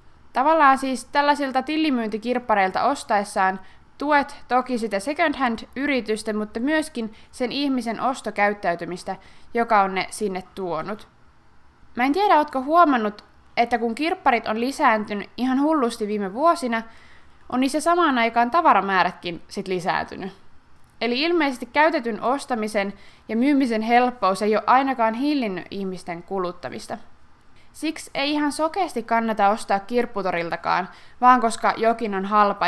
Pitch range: 200-260 Hz